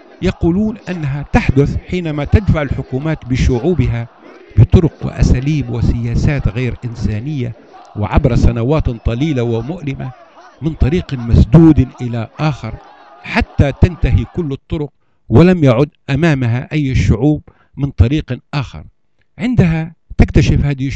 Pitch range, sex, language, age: 115-150 Hz, male, Arabic, 60-79